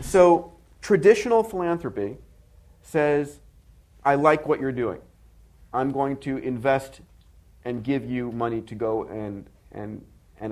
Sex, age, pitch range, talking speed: male, 40-59, 105-140 Hz, 125 wpm